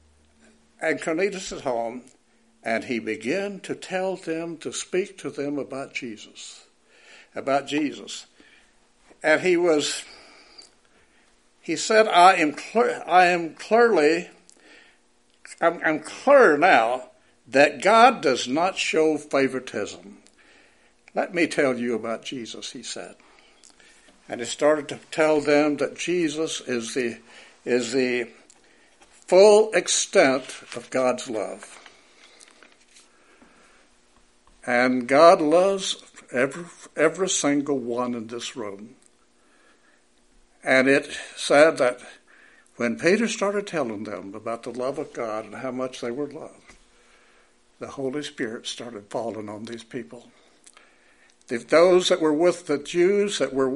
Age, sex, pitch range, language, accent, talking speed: 60-79, male, 115-175 Hz, English, American, 125 wpm